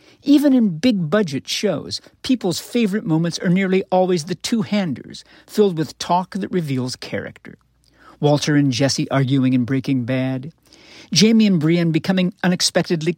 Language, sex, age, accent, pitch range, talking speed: English, male, 50-69, American, 150-215 Hz, 135 wpm